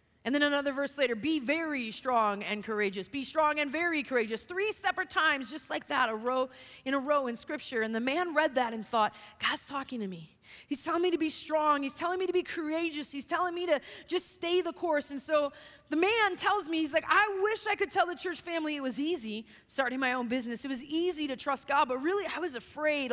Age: 20-39